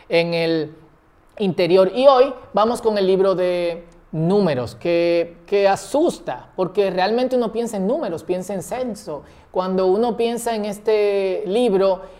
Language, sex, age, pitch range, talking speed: Spanish, male, 30-49, 160-205 Hz, 145 wpm